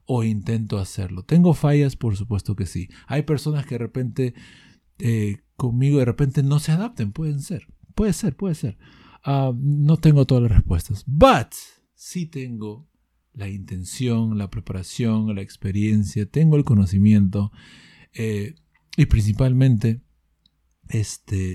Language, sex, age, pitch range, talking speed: English, male, 50-69, 100-145 Hz, 140 wpm